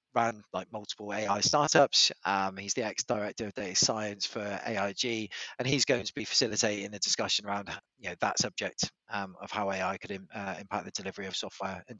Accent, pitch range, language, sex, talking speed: British, 100-115 Hz, English, male, 180 wpm